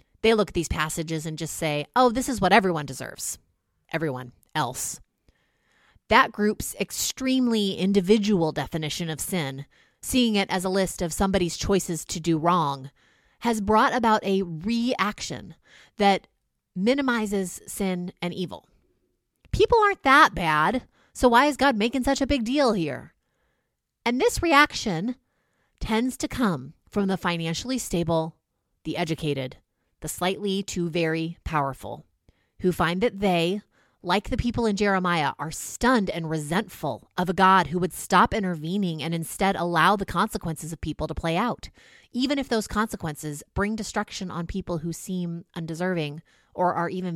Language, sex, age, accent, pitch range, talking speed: English, female, 30-49, American, 165-220 Hz, 150 wpm